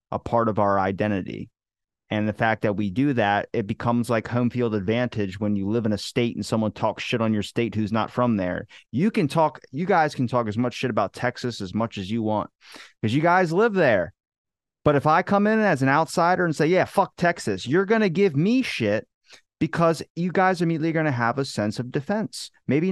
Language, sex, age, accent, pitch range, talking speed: English, male, 30-49, American, 110-150 Hz, 230 wpm